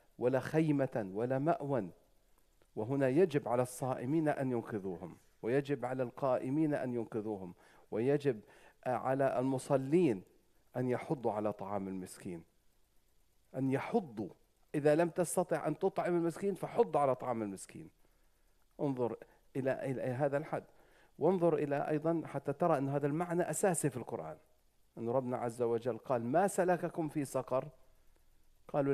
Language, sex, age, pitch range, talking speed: English, male, 50-69, 115-155 Hz, 125 wpm